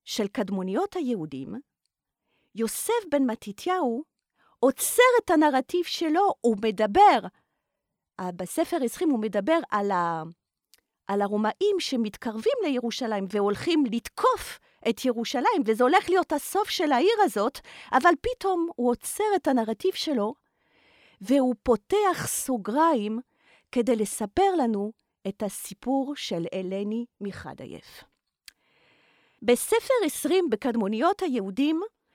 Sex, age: female, 40-59